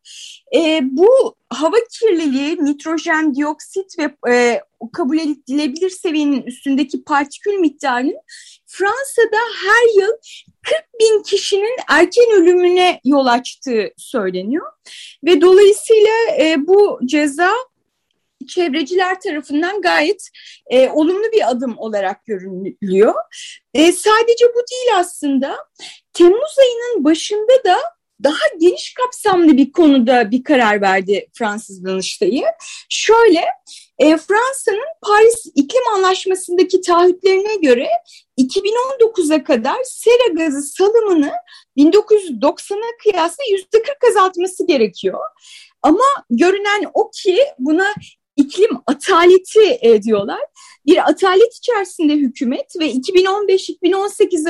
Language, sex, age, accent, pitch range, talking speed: Turkish, female, 30-49, native, 295-405 Hz, 100 wpm